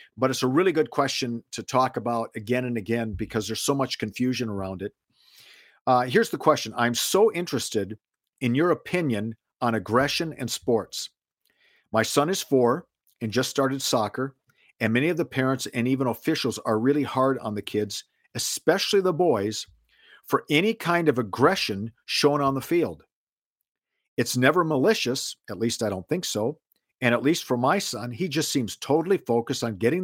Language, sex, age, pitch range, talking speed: English, male, 50-69, 115-145 Hz, 180 wpm